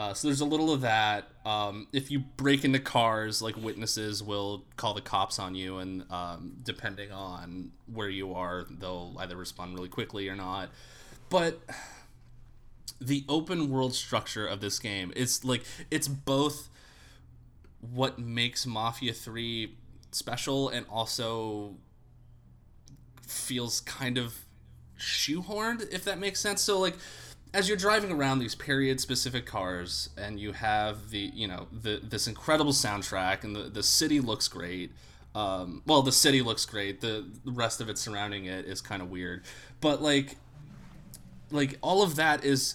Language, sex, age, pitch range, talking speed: English, male, 20-39, 105-135 Hz, 155 wpm